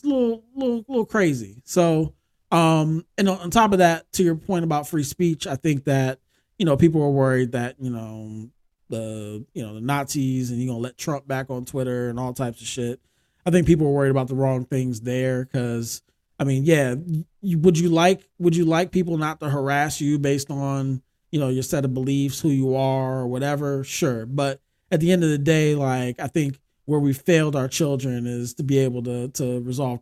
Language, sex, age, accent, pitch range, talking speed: English, male, 20-39, American, 125-160 Hz, 220 wpm